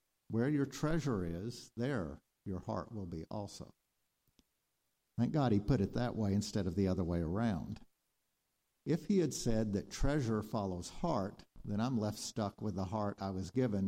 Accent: American